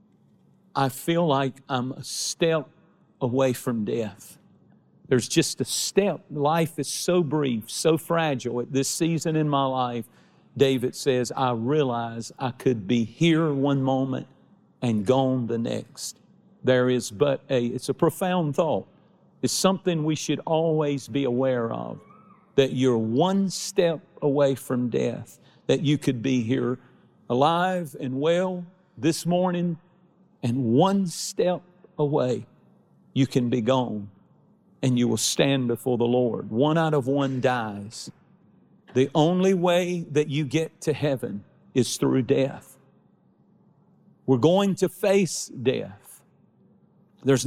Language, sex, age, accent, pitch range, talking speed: English, male, 50-69, American, 130-175 Hz, 140 wpm